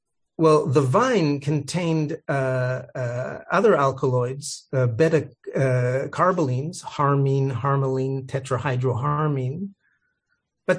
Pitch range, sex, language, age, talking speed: 125-150 Hz, male, English, 40-59, 85 wpm